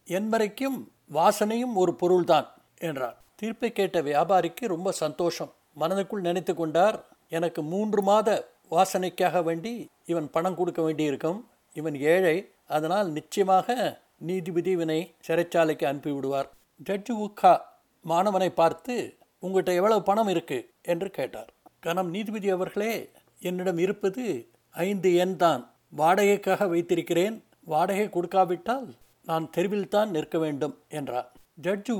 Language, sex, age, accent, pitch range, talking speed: Tamil, male, 60-79, native, 165-205 Hz, 110 wpm